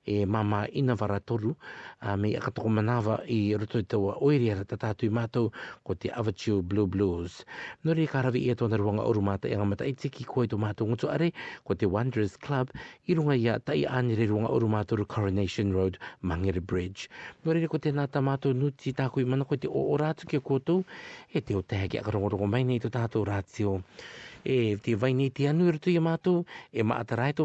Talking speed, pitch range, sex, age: 170 wpm, 105-140 Hz, male, 50-69